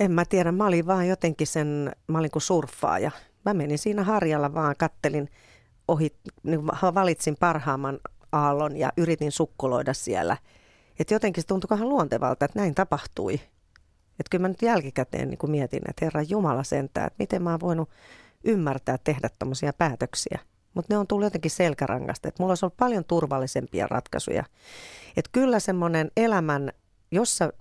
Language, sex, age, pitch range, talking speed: Finnish, female, 40-59, 135-180 Hz, 160 wpm